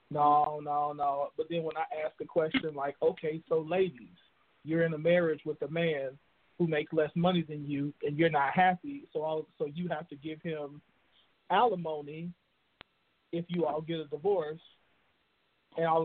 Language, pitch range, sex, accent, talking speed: English, 155-185 Hz, male, American, 180 wpm